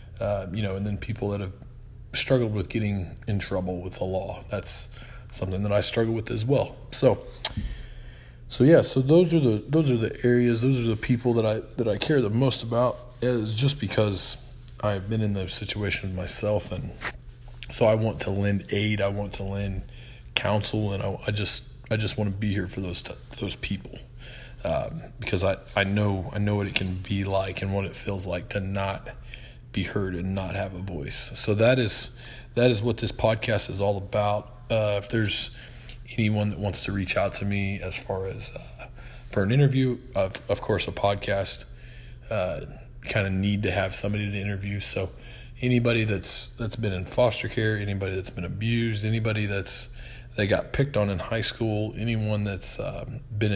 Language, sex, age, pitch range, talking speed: English, male, 20-39, 100-120 Hz, 195 wpm